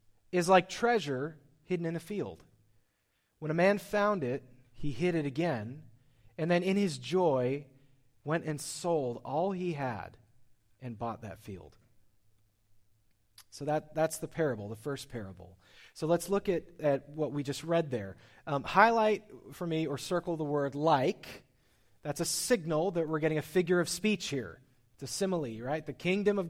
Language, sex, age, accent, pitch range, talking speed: English, male, 30-49, American, 125-180 Hz, 170 wpm